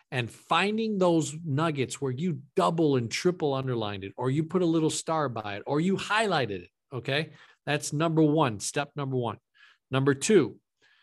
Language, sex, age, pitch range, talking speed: English, male, 50-69, 125-165 Hz, 175 wpm